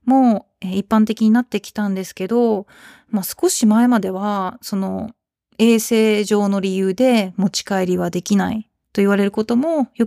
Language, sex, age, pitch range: Japanese, female, 20-39, 190-235 Hz